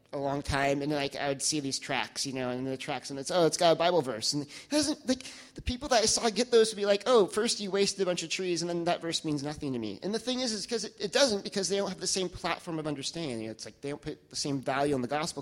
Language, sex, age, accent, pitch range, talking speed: English, male, 30-49, American, 145-210 Hz, 320 wpm